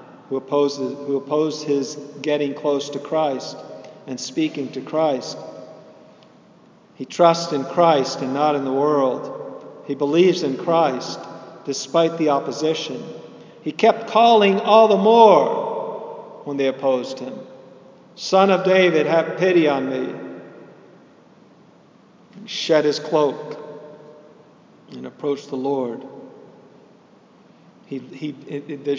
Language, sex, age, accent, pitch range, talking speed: English, male, 50-69, American, 130-160 Hz, 110 wpm